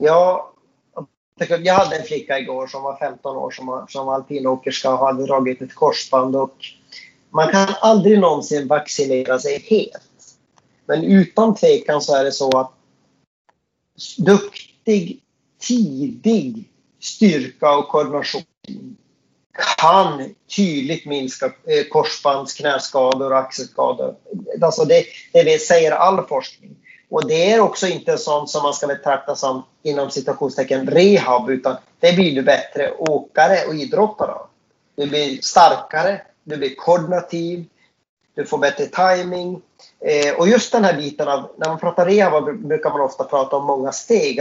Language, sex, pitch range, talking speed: Swedish, male, 140-205 Hz, 140 wpm